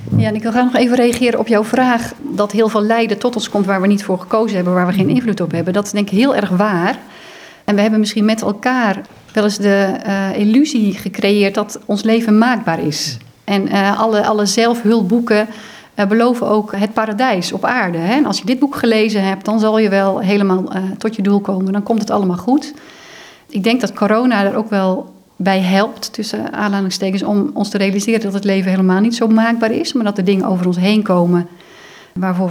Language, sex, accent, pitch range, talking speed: Dutch, female, Dutch, 195-230 Hz, 225 wpm